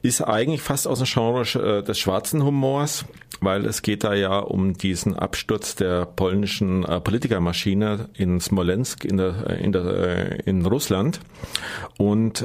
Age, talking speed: 40-59, 125 wpm